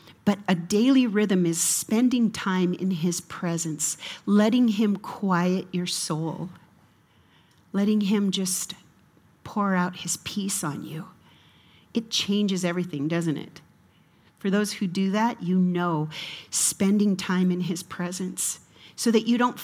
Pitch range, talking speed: 175-220 Hz, 140 wpm